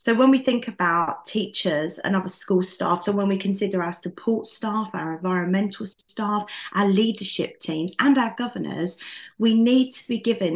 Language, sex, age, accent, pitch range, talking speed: English, female, 20-39, British, 180-215 Hz, 175 wpm